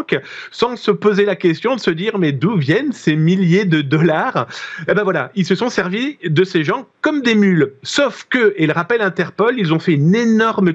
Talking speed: 220 wpm